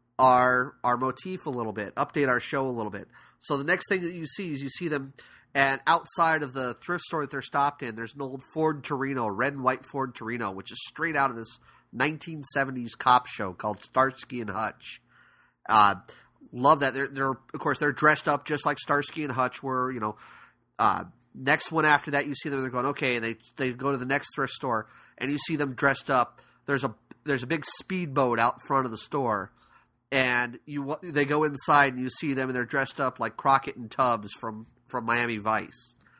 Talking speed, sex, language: 220 wpm, male, English